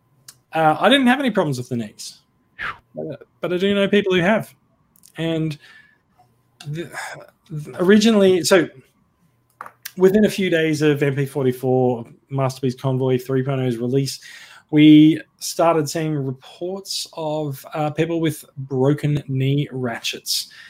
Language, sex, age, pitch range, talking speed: English, male, 20-39, 130-165 Hz, 115 wpm